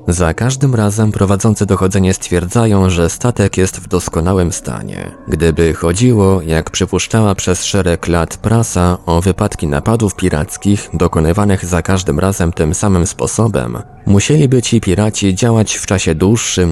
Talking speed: 135 wpm